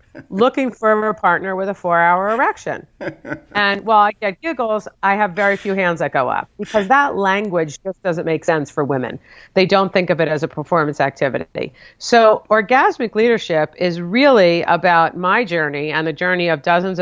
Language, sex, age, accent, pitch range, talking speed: English, female, 50-69, American, 160-205 Hz, 185 wpm